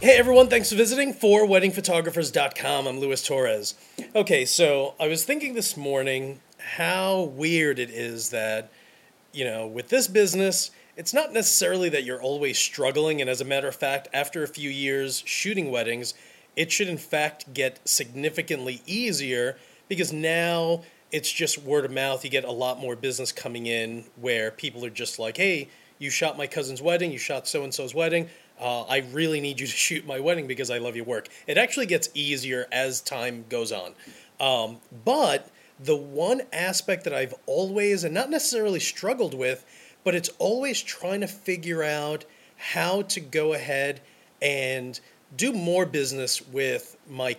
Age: 30-49